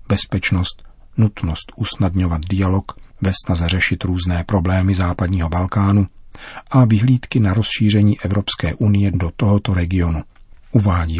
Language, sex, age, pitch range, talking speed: Czech, male, 40-59, 90-105 Hz, 105 wpm